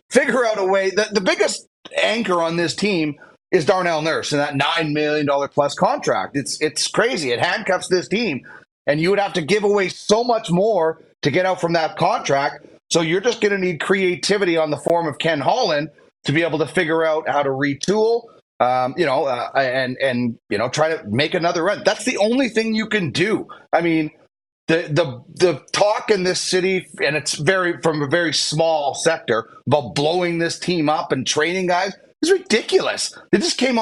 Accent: American